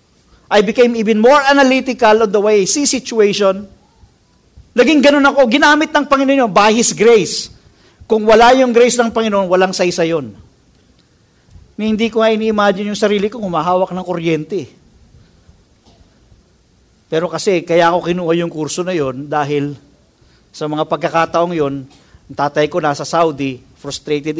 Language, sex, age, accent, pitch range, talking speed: English, male, 50-69, Filipino, 150-230 Hz, 145 wpm